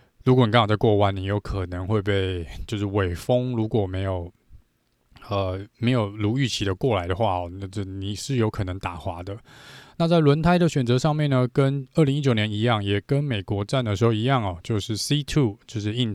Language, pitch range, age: Chinese, 95-125 Hz, 20-39